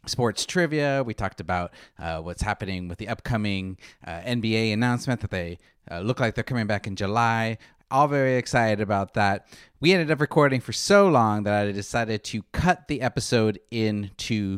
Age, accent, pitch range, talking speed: 30-49, American, 105-140 Hz, 180 wpm